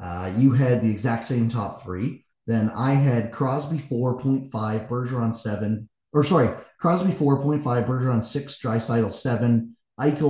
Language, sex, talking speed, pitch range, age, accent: English, male, 140 wpm, 115-140 Hz, 30-49, American